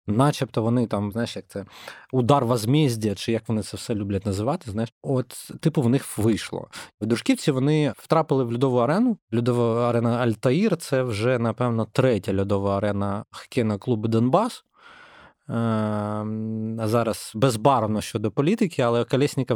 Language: Ukrainian